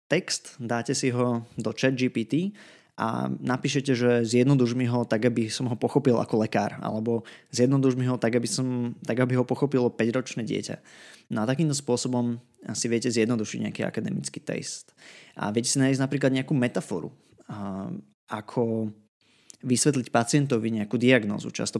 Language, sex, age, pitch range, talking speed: Slovak, male, 20-39, 110-130 Hz, 155 wpm